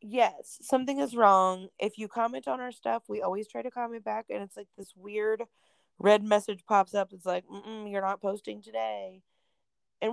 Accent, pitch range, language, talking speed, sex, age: American, 185-225 Hz, English, 200 wpm, female, 20-39